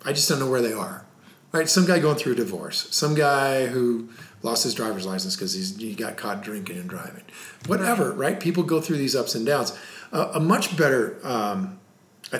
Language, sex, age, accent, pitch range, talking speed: English, male, 40-59, American, 125-190 Hz, 210 wpm